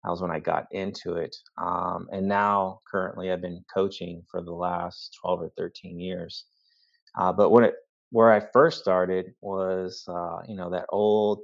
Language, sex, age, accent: English, male, 30-49, American